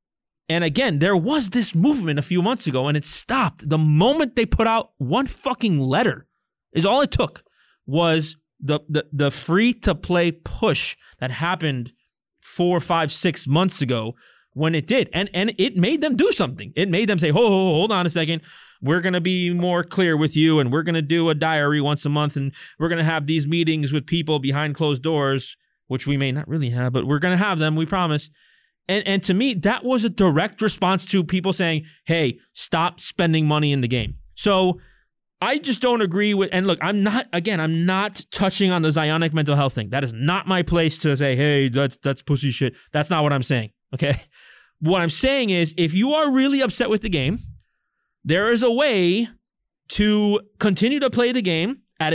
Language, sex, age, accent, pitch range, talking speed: English, male, 30-49, American, 150-200 Hz, 210 wpm